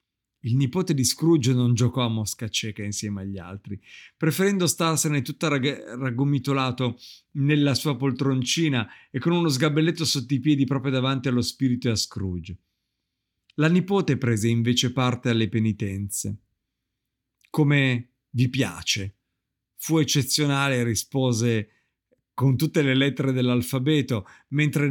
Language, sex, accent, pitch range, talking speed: Italian, male, native, 125-160 Hz, 125 wpm